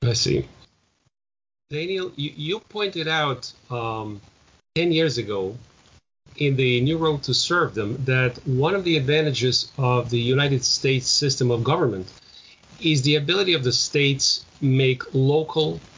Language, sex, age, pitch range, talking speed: English, male, 40-59, 120-150 Hz, 145 wpm